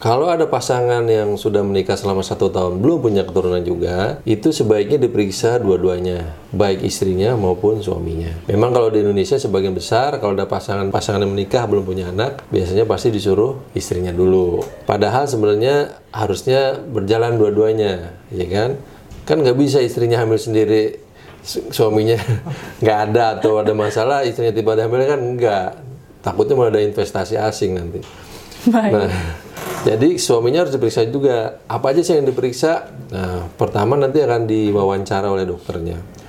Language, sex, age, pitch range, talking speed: Indonesian, male, 40-59, 95-115 Hz, 145 wpm